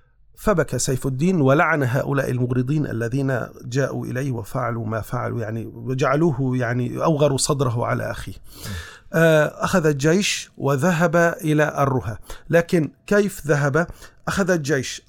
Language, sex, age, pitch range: Arabic, male, 40-59, 135-175 Hz